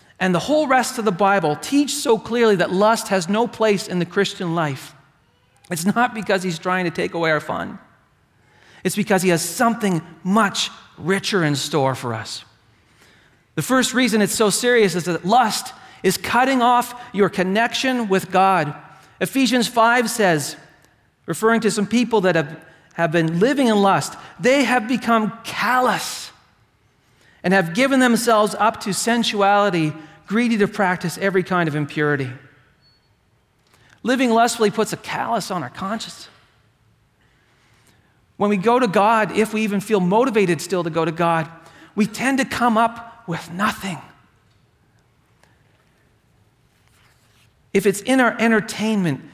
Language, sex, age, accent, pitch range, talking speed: English, male, 40-59, American, 150-225 Hz, 150 wpm